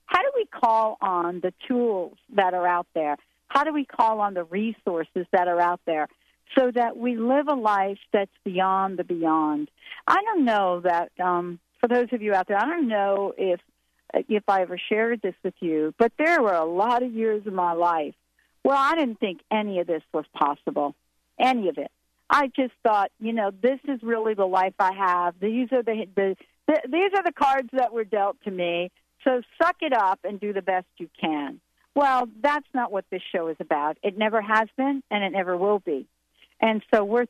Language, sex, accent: English, female, American